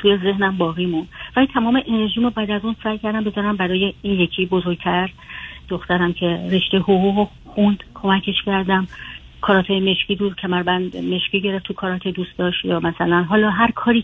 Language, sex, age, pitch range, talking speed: Persian, female, 40-59, 180-205 Hz, 170 wpm